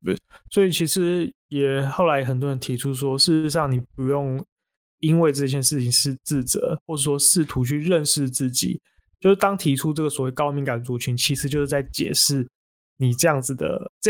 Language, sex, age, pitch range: Chinese, male, 20-39, 130-155 Hz